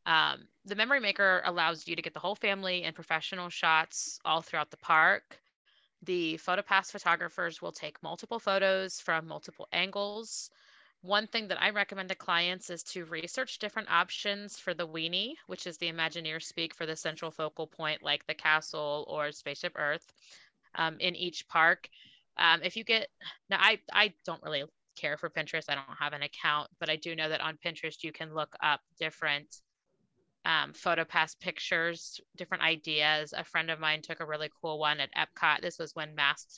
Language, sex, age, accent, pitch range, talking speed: English, female, 30-49, American, 155-185 Hz, 185 wpm